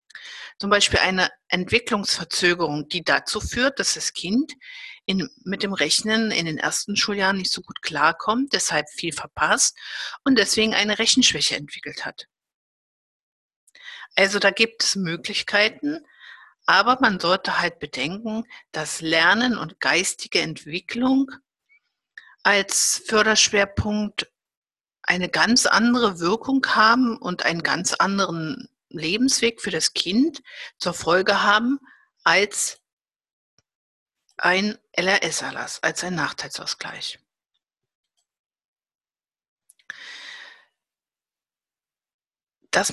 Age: 50-69